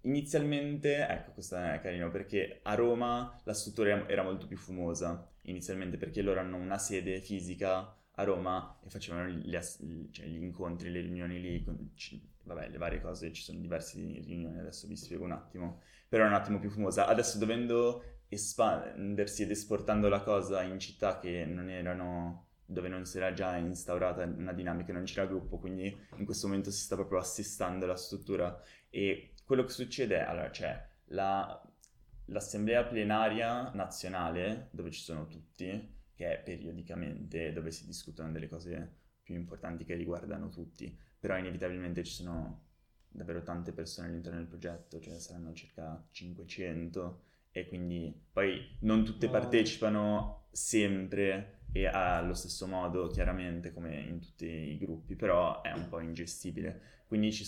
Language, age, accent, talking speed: Italian, 20-39, native, 160 wpm